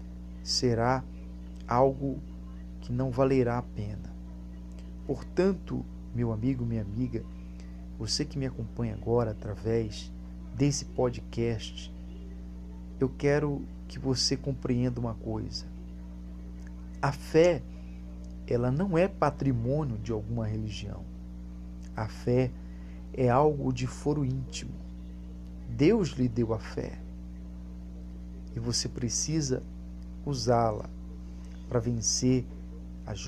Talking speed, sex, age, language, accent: 100 wpm, male, 40-59, Portuguese, Brazilian